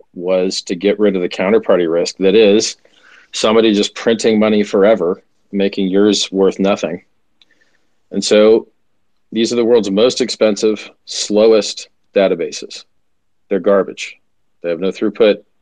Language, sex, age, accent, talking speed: English, male, 40-59, American, 135 wpm